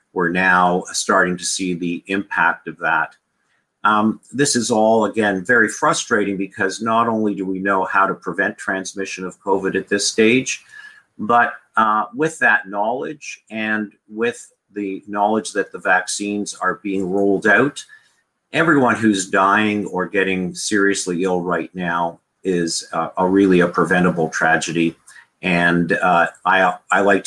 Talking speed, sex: 145 wpm, male